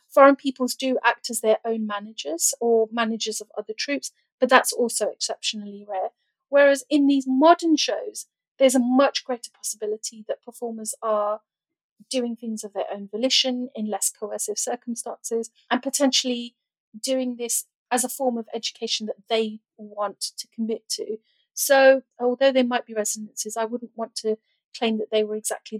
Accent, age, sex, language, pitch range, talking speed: British, 40-59, female, English, 220-260 Hz, 165 wpm